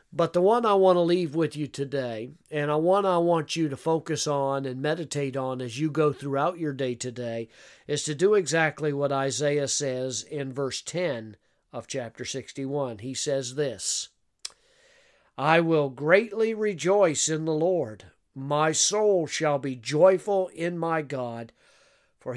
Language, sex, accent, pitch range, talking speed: English, male, American, 135-165 Hz, 165 wpm